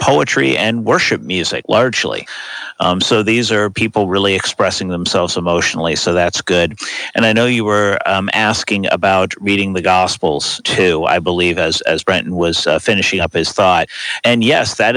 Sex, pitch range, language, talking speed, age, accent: male, 95-110 Hz, English, 170 wpm, 50-69, American